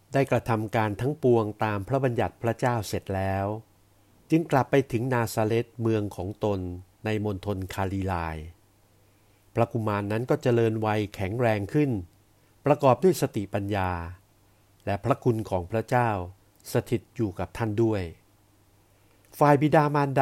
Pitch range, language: 100-120 Hz, Thai